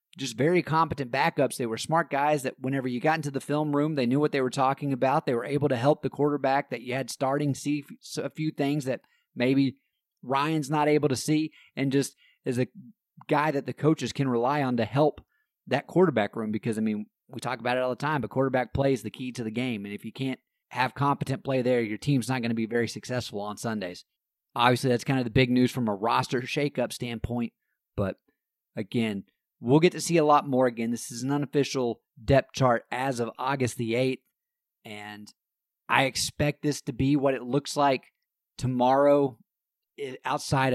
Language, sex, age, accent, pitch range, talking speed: English, male, 30-49, American, 120-145 Hz, 210 wpm